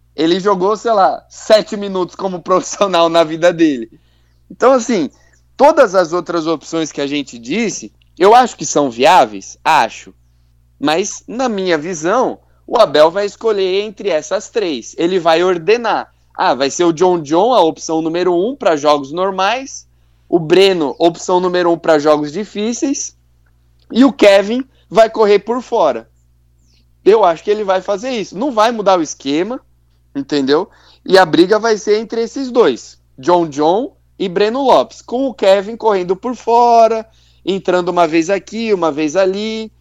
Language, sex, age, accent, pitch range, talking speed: Portuguese, male, 20-39, Brazilian, 150-215 Hz, 165 wpm